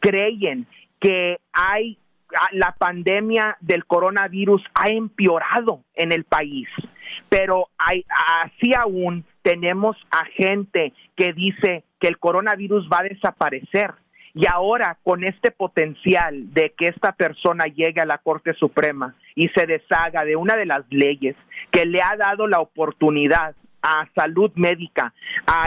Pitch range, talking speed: 165-205 Hz, 135 wpm